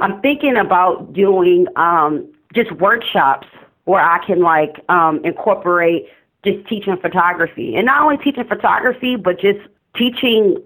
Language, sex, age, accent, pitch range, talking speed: English, female, 40-59, American, 160-200 Hz, 135 wpm